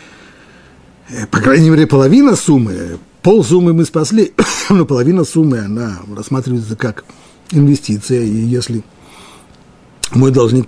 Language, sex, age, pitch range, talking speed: Russian, male, 50-69, 105-150 Hz, 110 wpm